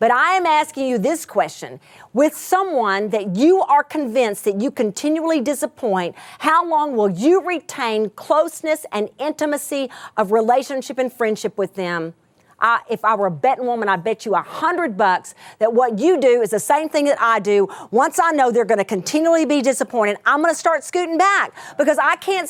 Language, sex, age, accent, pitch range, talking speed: English, female, 40-59, American, 220-320 Hz, 185 wpm